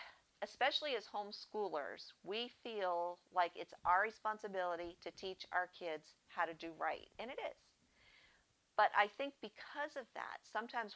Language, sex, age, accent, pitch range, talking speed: English, female, 50-69, American, 170-210 Hz, 150 wpm